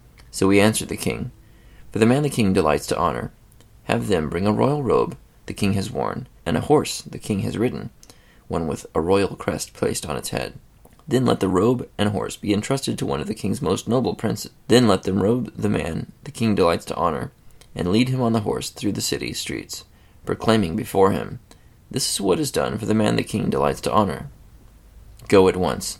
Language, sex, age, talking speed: English, male, 20-39, 220 wpm